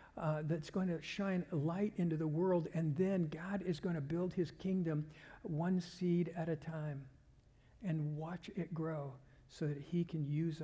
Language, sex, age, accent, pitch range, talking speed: English, male, 60-79, American, 160-195 Hz, 180 wpm